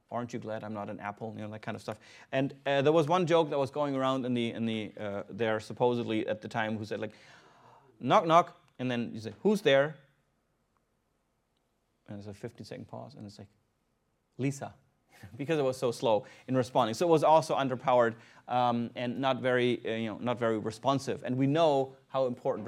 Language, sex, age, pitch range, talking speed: English, male, 30-49, 110-140 Hz, 215 wpm